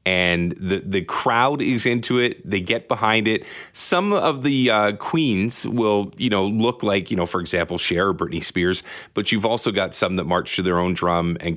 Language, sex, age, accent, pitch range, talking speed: English, male, 30-49, American, 90-120 Hz, 215 wpm